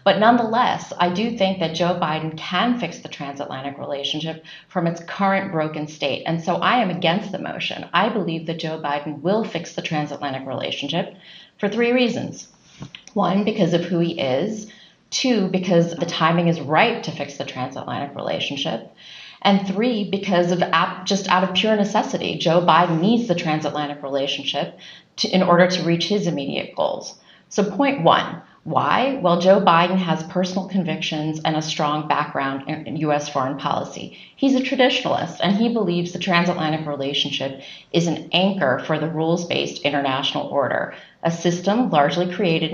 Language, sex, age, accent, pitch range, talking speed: English, female, 30-49, American, 155-200 Hz, 165 wpm